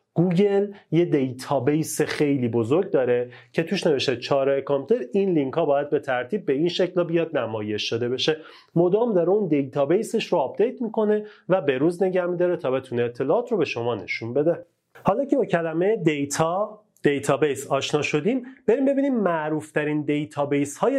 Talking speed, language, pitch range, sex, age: 165 wpm, Persian, 135-180 Hz, male, 30-49